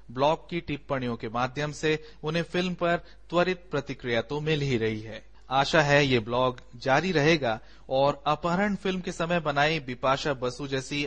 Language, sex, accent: Hindi, male, native